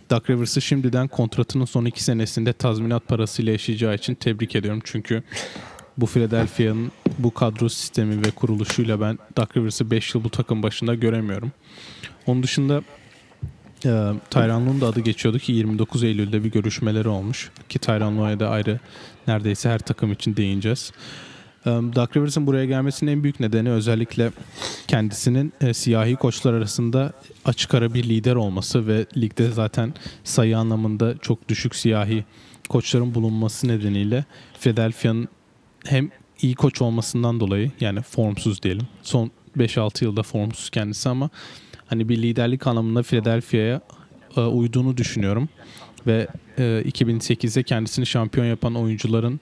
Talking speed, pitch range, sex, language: 130 wpm, 110-125 Hz, male, Turkish